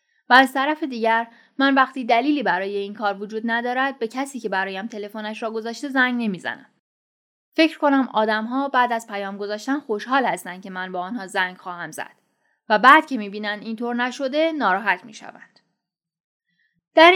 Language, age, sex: Persian, 10-29, female